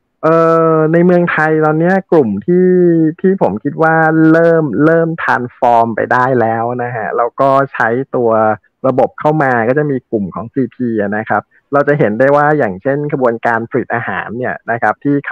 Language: Thai